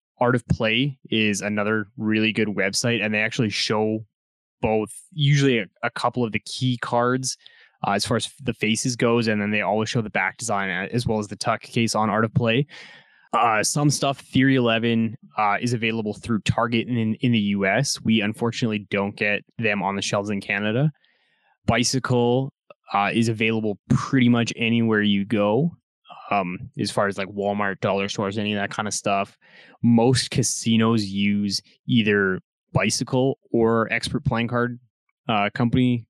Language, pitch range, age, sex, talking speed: English, 105-125 Hz, 20-39, male, 170 wpm